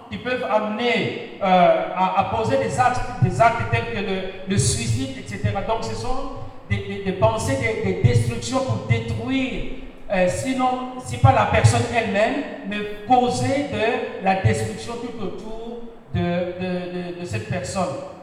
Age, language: 50-69, French